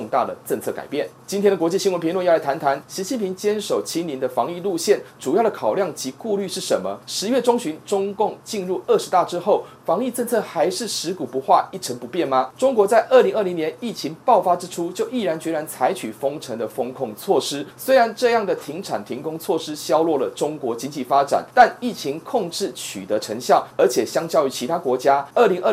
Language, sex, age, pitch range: Chinese, male, 30-49, 155-230 Hz